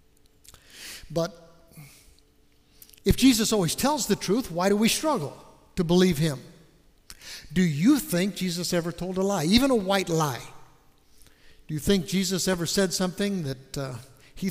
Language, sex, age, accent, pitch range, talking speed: English, male, 60-79, American, 130-185 Hz, 150 wpm